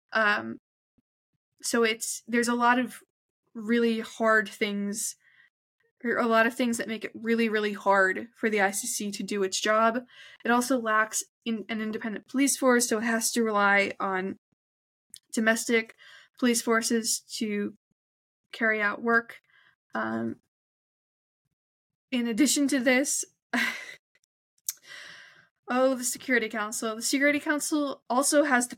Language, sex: English, female